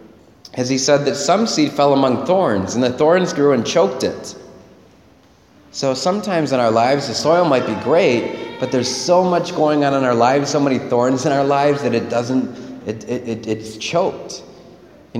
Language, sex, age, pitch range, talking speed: English, male, 30-49, 115-145 Hz, 200 wpm